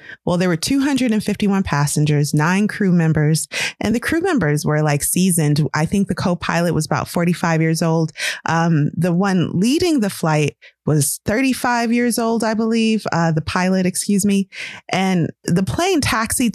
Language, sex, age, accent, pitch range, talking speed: English, female, 30-49, American, 155-200 Hz, 165 wpm